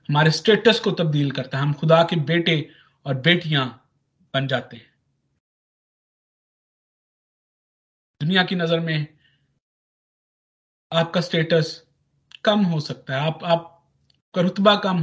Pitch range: 140-175 Hz